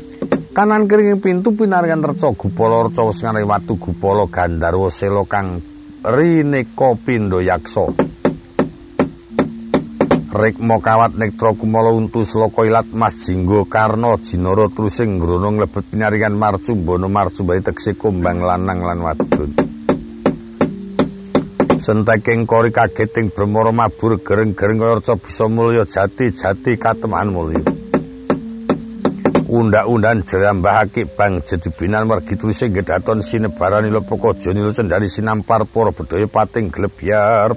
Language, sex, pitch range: Indonesian, male, 100-120 Hz